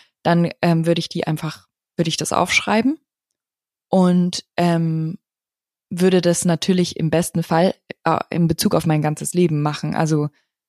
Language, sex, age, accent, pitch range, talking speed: German, female, 20-39, German, 160-185 Hz, 150 wpm